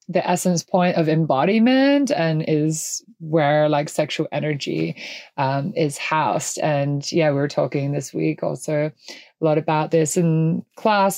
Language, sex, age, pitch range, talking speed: English, female, 20-39, 150-180 Hz, 150 wpm